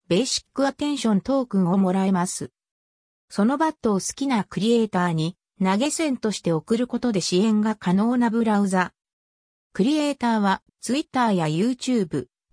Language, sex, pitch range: Japanese, female, 180-260 Hz